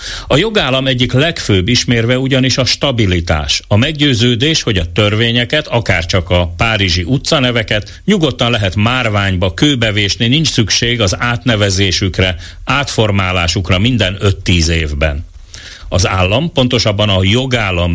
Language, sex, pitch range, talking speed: Hungarian, male, 90-130 Hz, 120 wpm